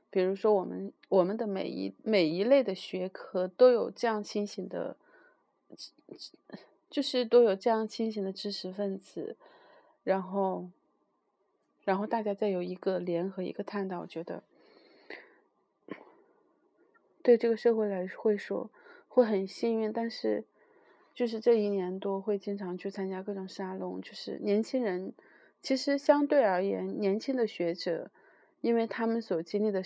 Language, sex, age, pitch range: Chinese, female, 30-49, 185-235 Hz